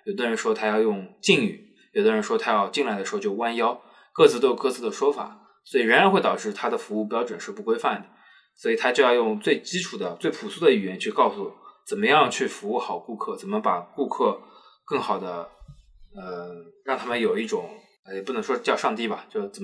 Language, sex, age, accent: Chinese, male, 20-39, native